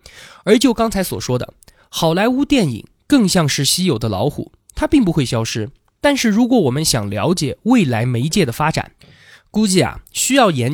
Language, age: Chinese, 20-39